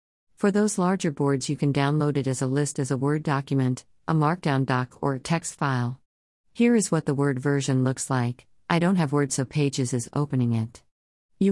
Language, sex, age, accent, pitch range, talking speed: English, female, 50-69, American, 130-160 Hz, 210 wpm